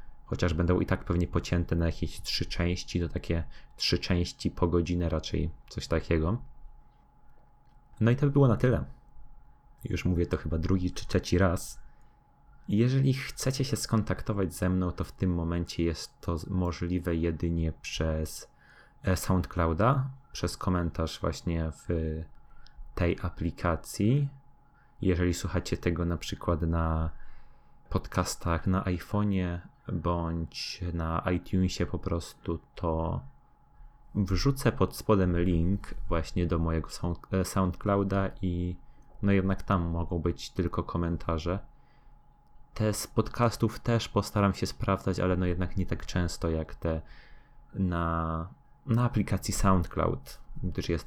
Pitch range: 85-120 Hz